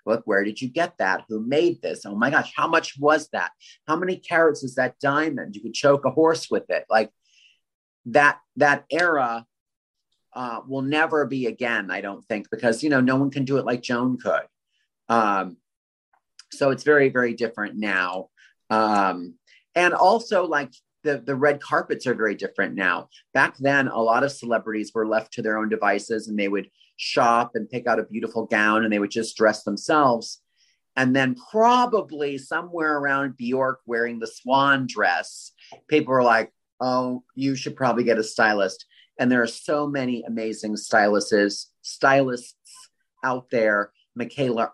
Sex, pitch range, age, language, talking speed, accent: male, 110-145 Hz, 30-49, English, 175 wpm, American